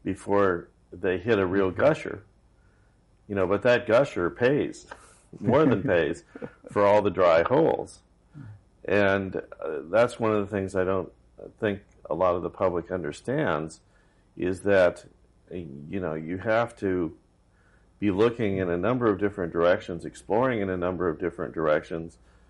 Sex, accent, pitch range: male, American, 85-105 Hz